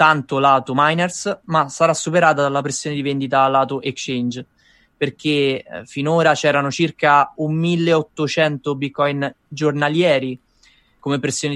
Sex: male